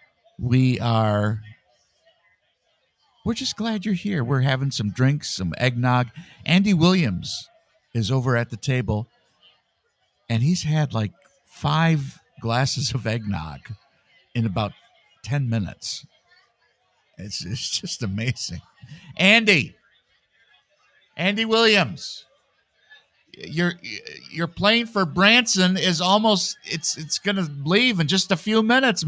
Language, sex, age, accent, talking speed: English, male, 50-69, American, 115 wpm